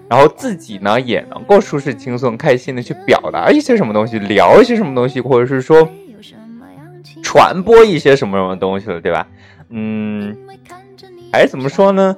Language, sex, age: Chinese, male, 20-39